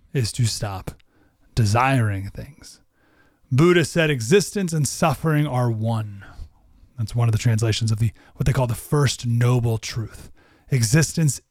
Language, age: English, 30-49